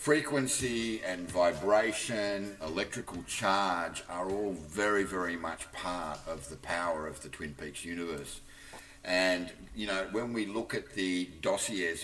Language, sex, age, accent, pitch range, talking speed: English, male, 50-69, Australian, 90-110 Hz, 140 wpm